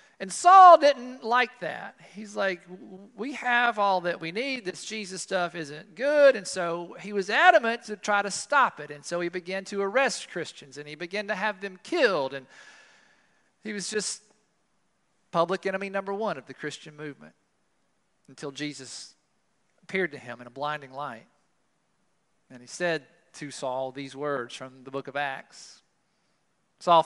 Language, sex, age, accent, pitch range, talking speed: English, male, 40-59, American, 145-200 Hz, 170 wpm